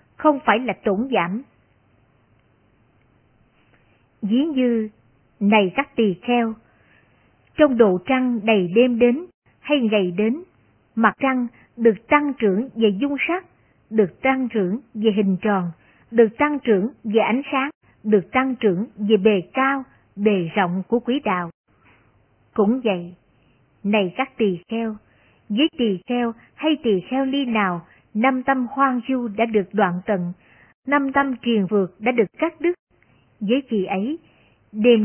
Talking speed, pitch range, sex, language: 145 wpm, 185-255 Hz, male, Vietnamese